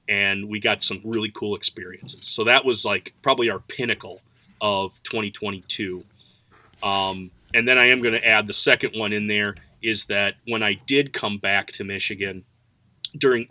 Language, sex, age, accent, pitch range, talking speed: English, male, 30-49, American, 100-115 Hz, 175 wpm